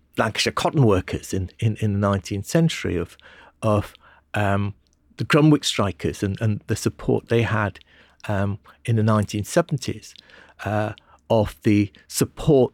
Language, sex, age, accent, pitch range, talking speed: English, male, 50-69, British, 105-145 Hz, 135 wpm